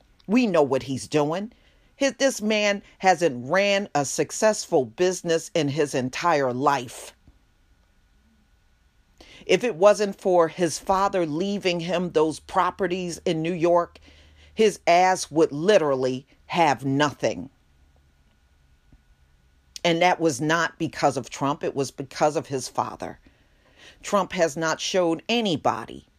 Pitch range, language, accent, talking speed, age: 140-190 Hz, English, American, 120 wpm, 40-59